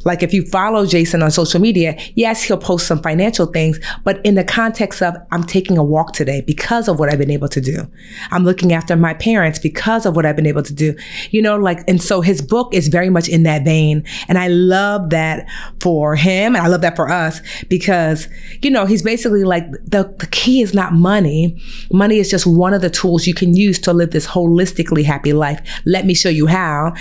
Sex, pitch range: female, 160-195 Hz